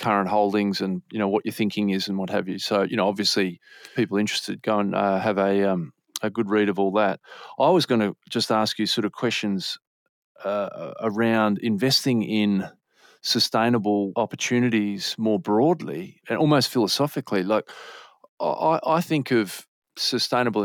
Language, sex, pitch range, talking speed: English, male, 105-125 Hz, 170 wpm